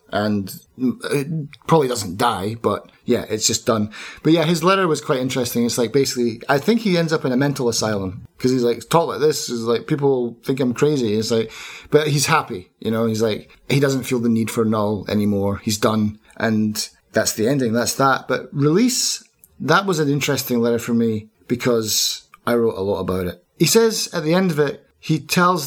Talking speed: 215 wpm